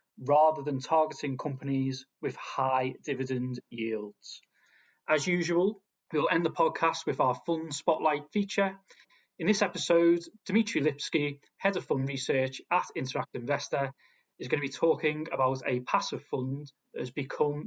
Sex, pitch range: male, 135-170 Hz